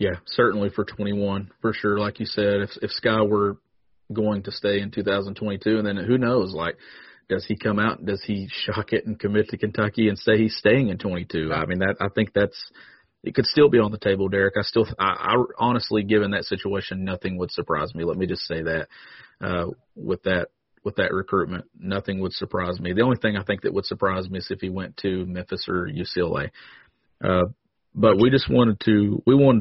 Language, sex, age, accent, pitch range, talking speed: English, male, 40-59, American, 95-105 Hz, 215 wpm